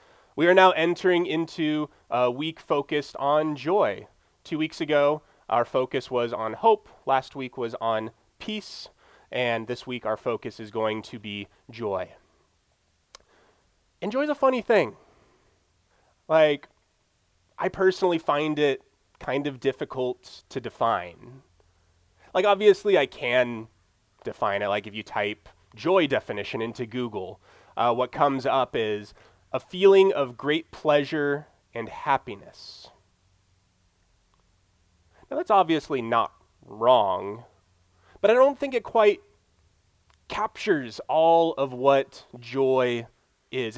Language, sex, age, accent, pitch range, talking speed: English, male, 30-49, American, 110-180 Hz, 125 wpm